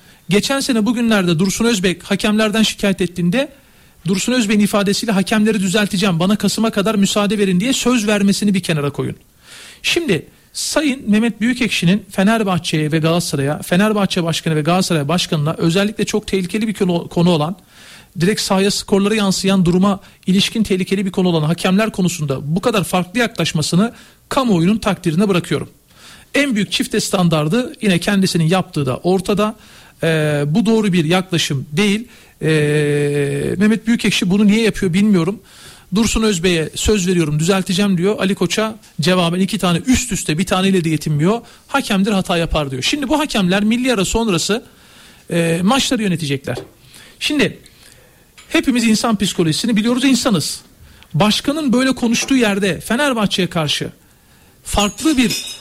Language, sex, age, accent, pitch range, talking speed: Turkish, male, 40-59, native, 175-220 Hz, 135 wpm